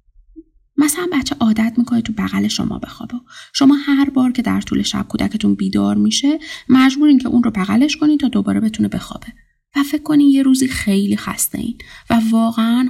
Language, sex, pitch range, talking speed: Persian, female, 205-275 Hz, 175 wpm